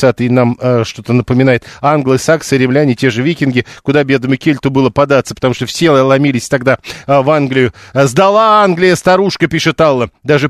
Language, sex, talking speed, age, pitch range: Russian, male, 165 wpm, 40-59, 130-165 Hz